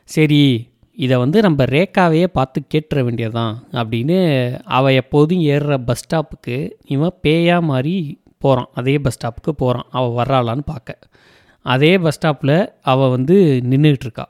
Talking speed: 130 wpm